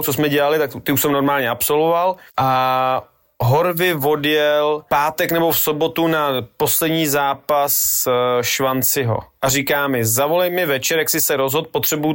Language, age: Czech, 30-49